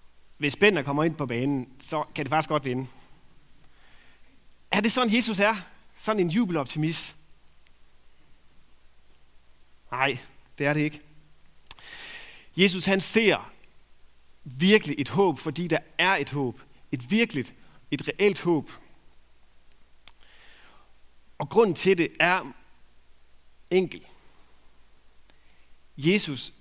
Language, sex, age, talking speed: Danish, male, 40-59, 110 wpm